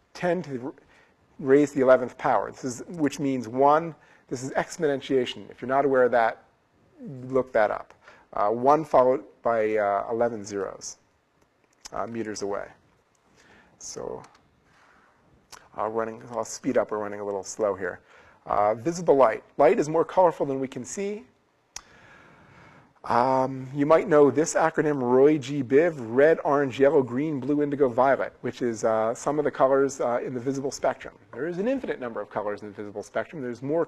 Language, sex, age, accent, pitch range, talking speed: English, male, 40-59, American, 120-150 Hz, 170 wpm